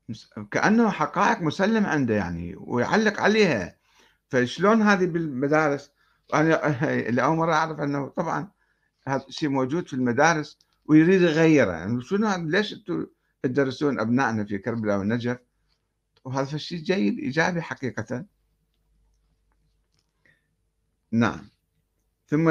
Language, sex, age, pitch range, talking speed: Arabic, male, 60-79, 125-170 Hz, 105 wpm